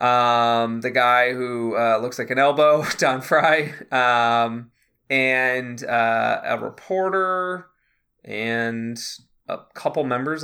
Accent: American